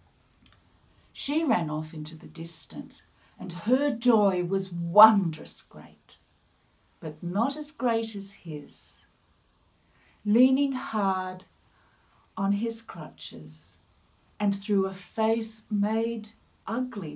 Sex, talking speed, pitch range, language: female, 100 wpm, 160-225 Hz, English